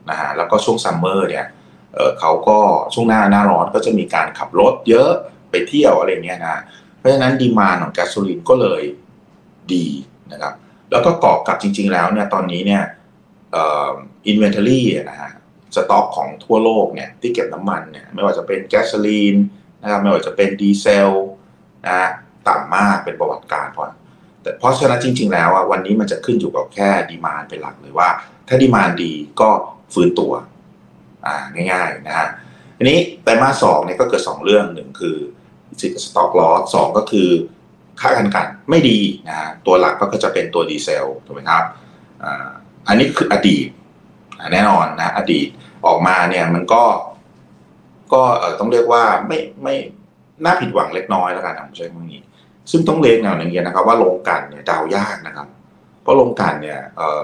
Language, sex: Thai, male